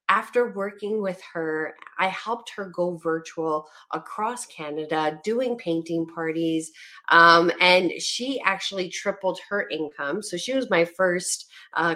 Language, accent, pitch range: English, American, 180-240 Hz